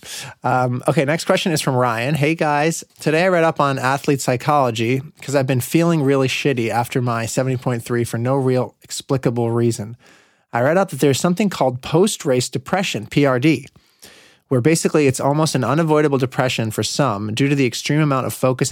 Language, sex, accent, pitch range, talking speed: English, male, American, 120-145 Hz, 180 wpm